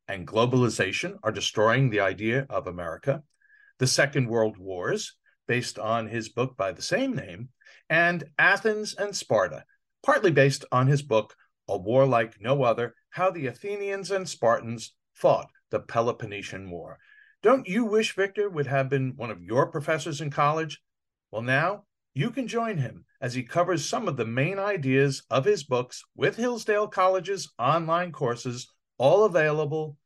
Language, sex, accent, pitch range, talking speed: English, male, American, 125-185 Hz, 160 wpm